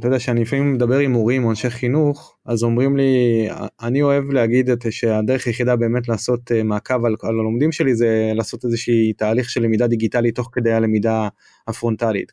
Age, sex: 20-39, male